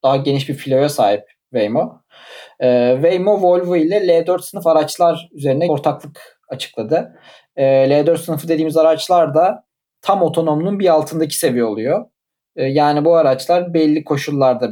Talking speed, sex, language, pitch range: 140 wpm, male, Turkish, 140-170 Hz